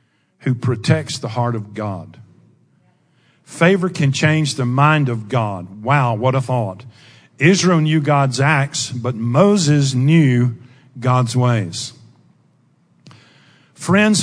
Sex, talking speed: male, 115 wpm